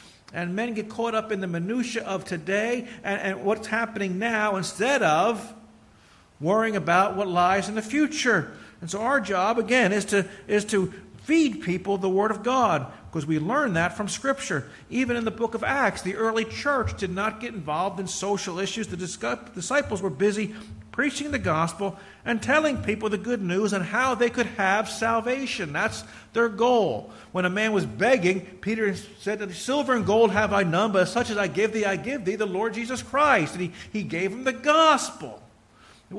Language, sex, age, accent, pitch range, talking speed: English, male, 50-69, American, 195-235 Hz, 195 wpm